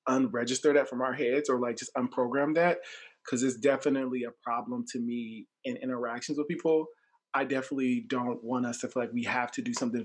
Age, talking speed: 20-39, 205 wpm